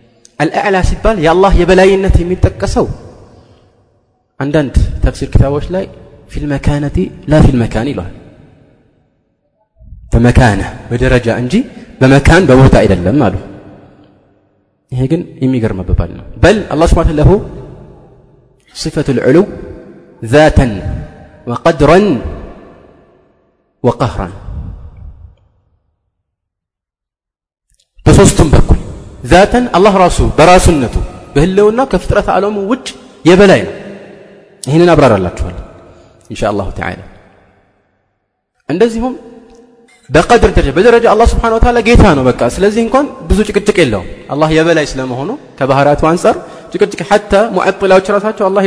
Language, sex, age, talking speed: Amharic, male, 30-49, 95 wpm